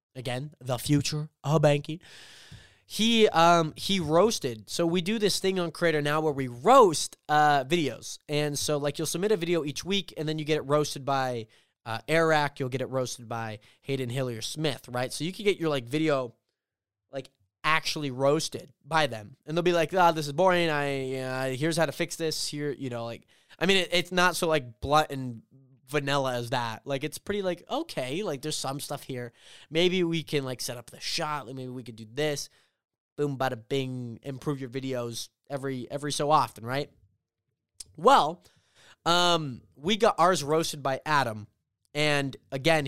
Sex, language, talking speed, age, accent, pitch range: male, English, 195 wpm, 20-39, American, 130-160 Hz